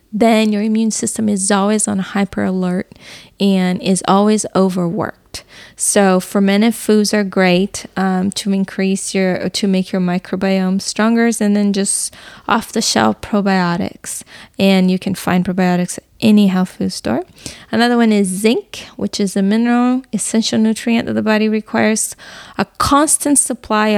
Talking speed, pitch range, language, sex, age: 155 wpm, 185-215 Hz, English, female, 20-39